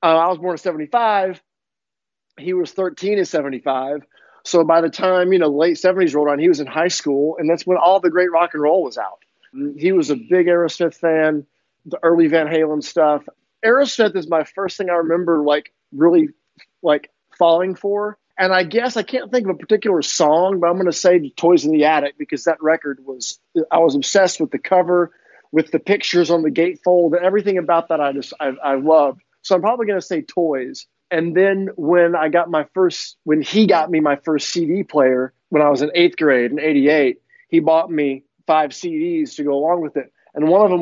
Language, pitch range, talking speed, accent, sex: English, 155-190 Hz, 215 wpm, American, male